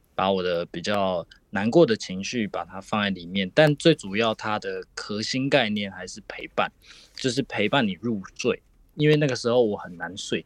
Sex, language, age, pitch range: male, Japanese, 20-39, 95-125 Hz